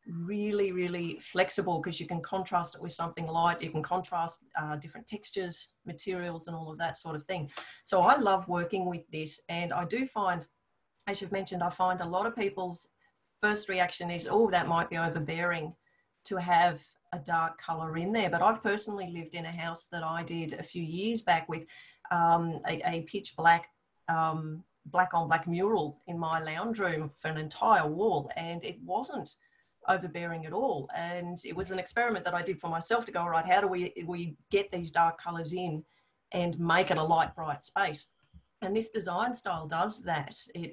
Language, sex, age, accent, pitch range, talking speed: English, female, 40-59, Australian, 165-185 Hz, 200 wpm